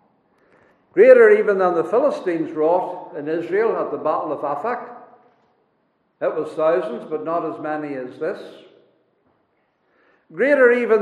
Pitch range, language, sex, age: 175-245 Hz, English, male, 60-79